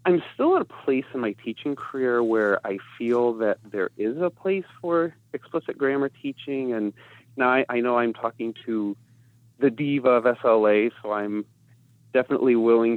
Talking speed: 170 wpm